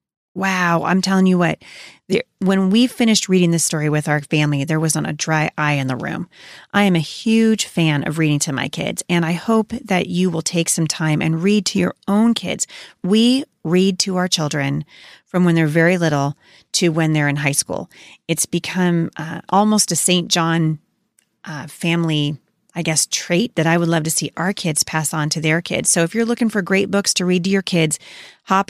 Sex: female